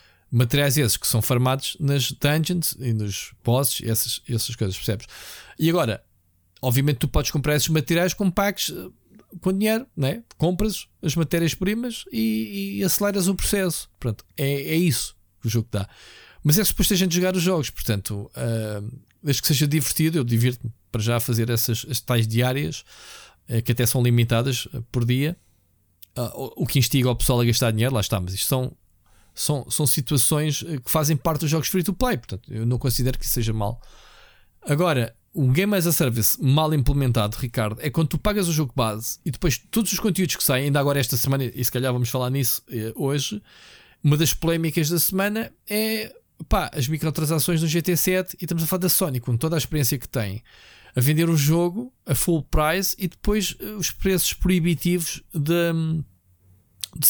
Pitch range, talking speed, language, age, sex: 120-170 Hz, 185 wpm, Portuguese, 20-39, male